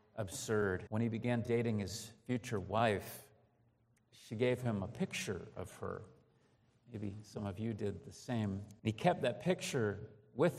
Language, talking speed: English, 155 wpm